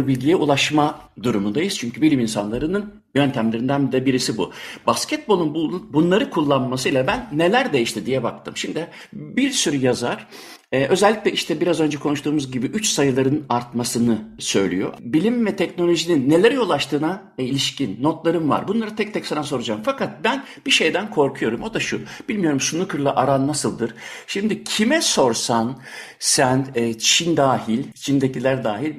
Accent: native